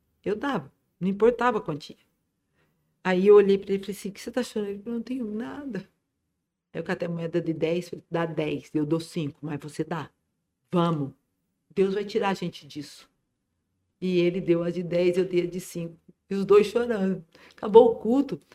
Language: Portuguese